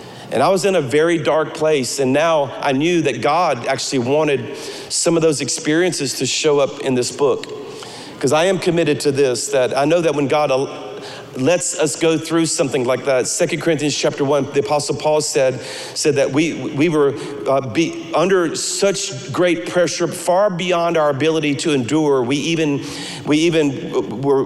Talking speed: 185 wpm